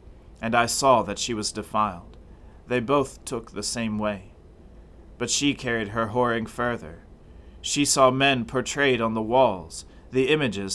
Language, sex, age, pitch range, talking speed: English, male, 30-49, 95-120 Hz, 155 wpm